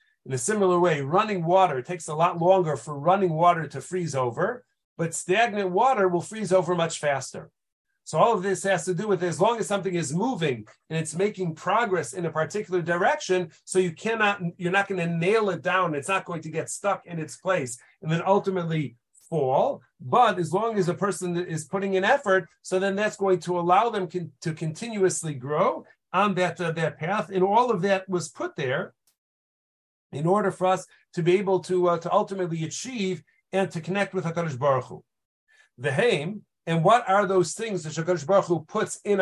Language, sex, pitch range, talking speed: English, male, 165-195 Hz, 200 wpm